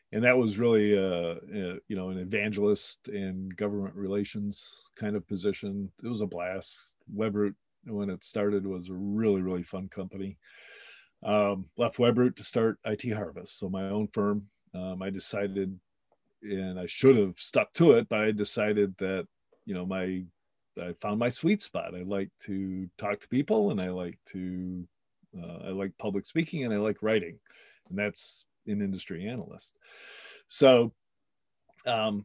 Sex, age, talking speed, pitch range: male, 40-59, 165 wpm, 95-110 Hz